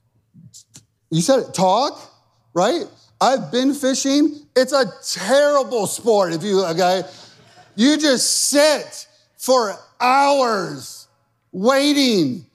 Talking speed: 100 wpm